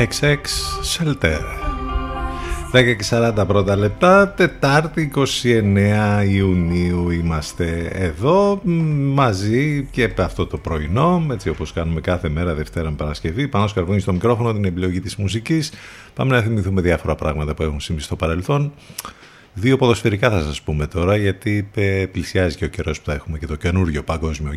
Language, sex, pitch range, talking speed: Greek, male, 85-120 Hz, 150 wpm